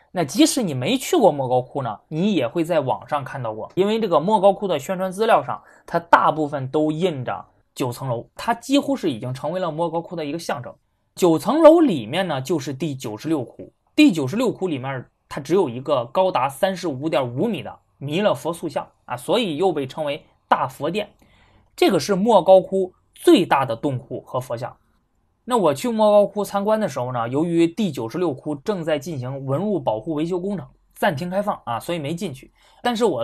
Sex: male